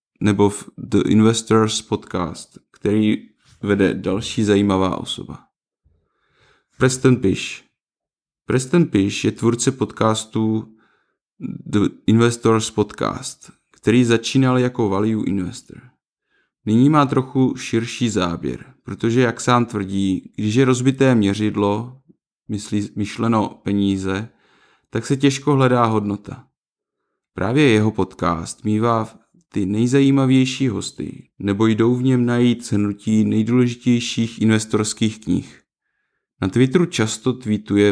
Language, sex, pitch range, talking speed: Czech, male, 105-125 Hz, 105 wpm